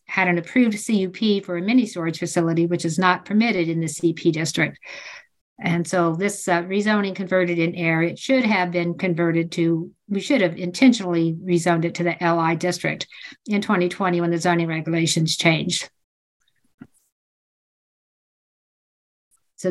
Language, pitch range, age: English, 170-195 Hz, 50-69